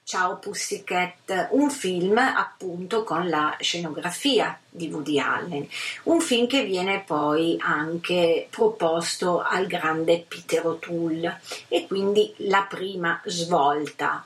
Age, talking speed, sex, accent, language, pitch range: 40-59, 115 wpm, female, native, Italian, 160-225 Hz